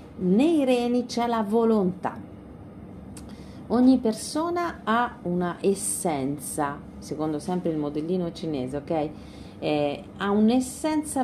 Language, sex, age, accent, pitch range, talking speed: Italian, female, 40-59, native, 150-240 Hz, 100 wpm